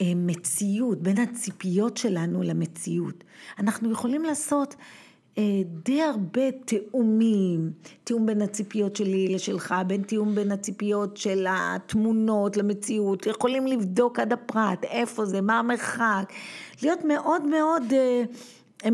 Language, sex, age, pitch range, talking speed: Hebrew, female, 50-69, 175-220 Hz, 120 wpm